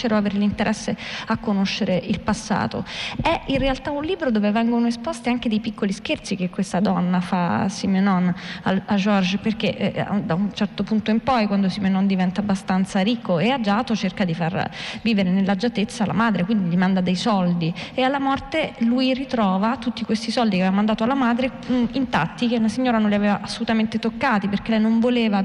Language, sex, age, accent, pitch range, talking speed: Italian, female, 20-39, native, 195-230 Hz, 190 wpm